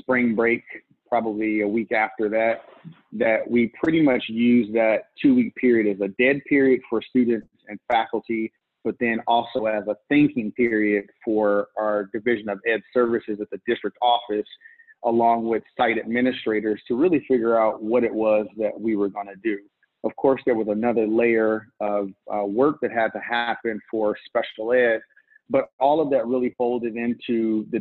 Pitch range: 110-120 Hz